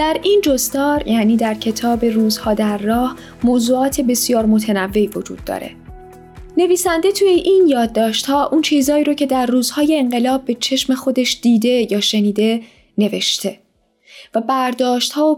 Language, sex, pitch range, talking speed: Persian, female, 215-280 Hz, 140 wpm